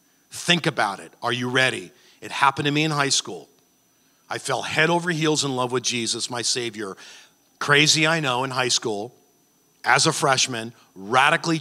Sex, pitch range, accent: male, 125-155 Hz, American